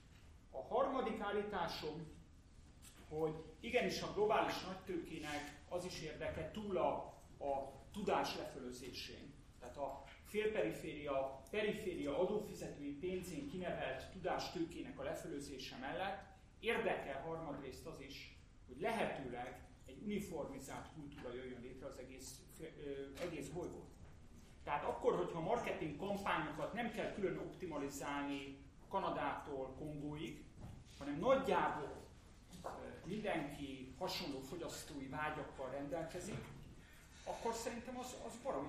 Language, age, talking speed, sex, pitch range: Hungarian, 40-59, 100 wpm, male, 135-180 Hz